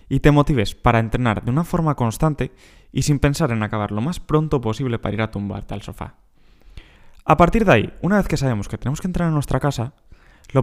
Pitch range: 105-135 Hz